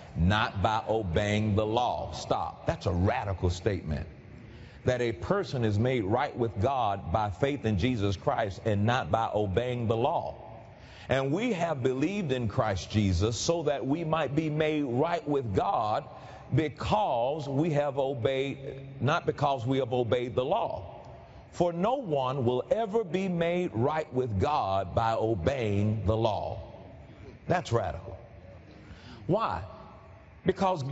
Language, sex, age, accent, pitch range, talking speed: English, male, 40-59, American, 110-150 Hz, 145 wpm